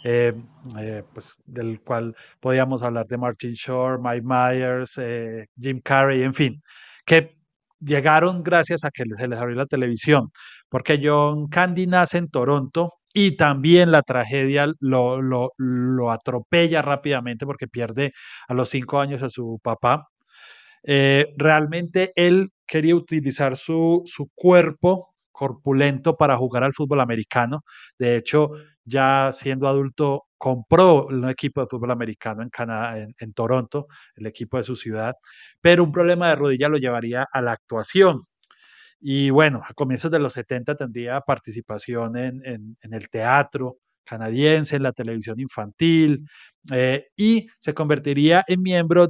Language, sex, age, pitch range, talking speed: Spanish, male, 30-49, 125-155 Hz, 145 wpm